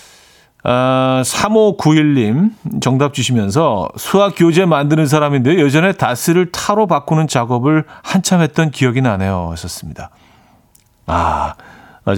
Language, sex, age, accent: Korean, male, 40-59, native